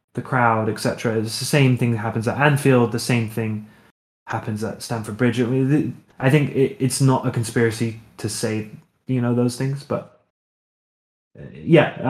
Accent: British